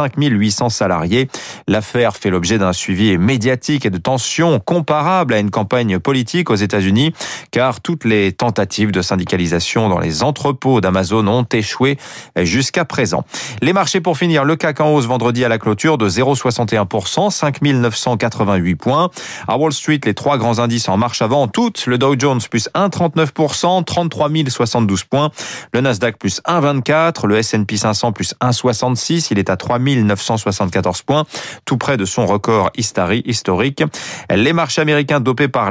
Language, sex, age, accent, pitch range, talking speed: French, male, 30-49, French, 110-150 Hz, 160 wpm